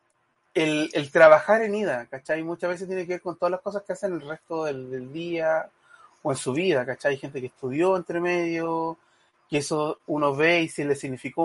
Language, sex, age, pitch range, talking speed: Spanish, male, 30-49, 150-175 Hz, 215 wpm